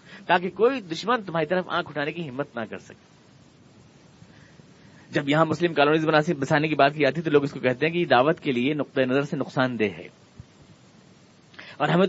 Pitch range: 130-160 Hz